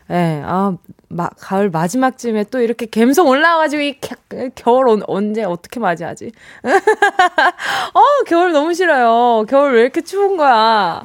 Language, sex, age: Korean, female, 20-39